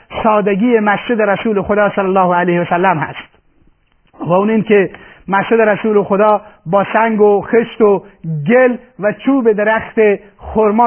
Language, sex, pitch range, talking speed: Persian, male, 195-220 Hz, 145 wpm